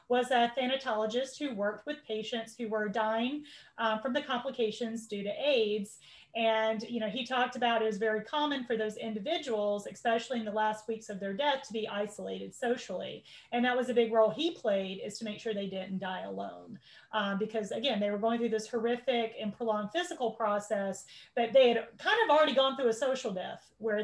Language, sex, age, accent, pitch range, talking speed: English, female, 30-49, American, 210-255 Hz, 205 wpm